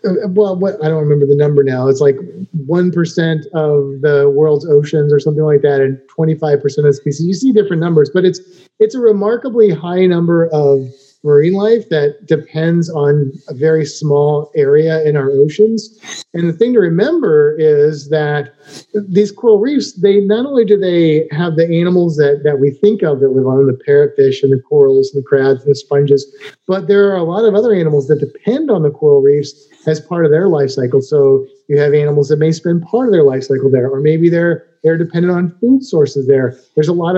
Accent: American